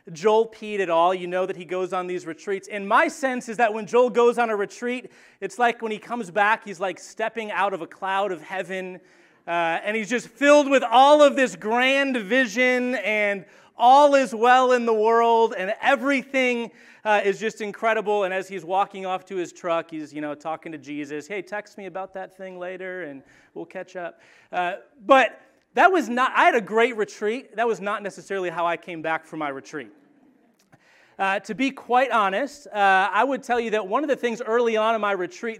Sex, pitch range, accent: male, 180-235 Hz, American